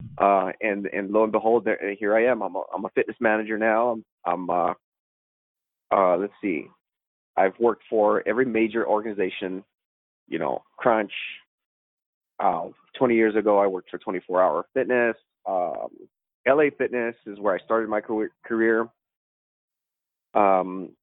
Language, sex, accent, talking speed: English, male, American, 155 wpm